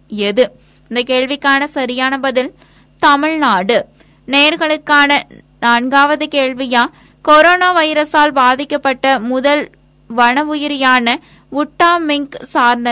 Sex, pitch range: female, 250-305 Hz